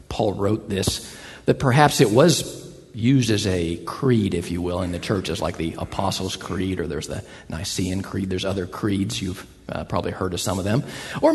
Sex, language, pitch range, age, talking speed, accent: male, English, 95-135 Hz, 50-69, 200 wpm, American